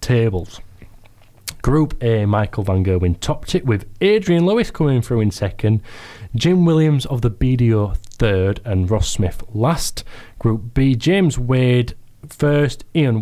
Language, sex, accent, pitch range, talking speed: English, male, British, 95-125 Hz, 140 wpm